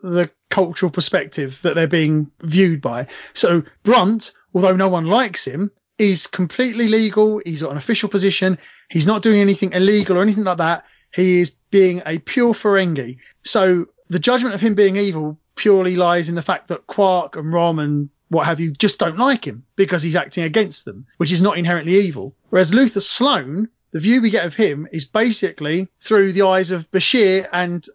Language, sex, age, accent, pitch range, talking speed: English, male, 30-49, British, 170-210 Hz, 190 wpm